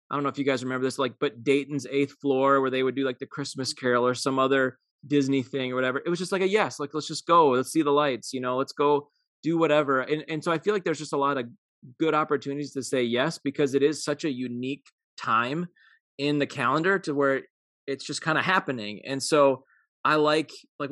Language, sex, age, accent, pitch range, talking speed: English, male, 20-39, American, 130-160 Hz, 245 wpm